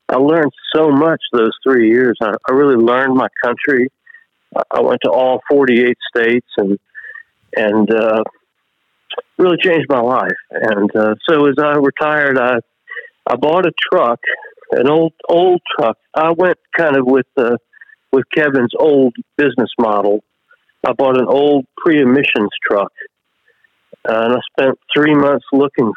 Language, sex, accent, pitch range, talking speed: English, male, American, 120-150 Hz, 155 wpm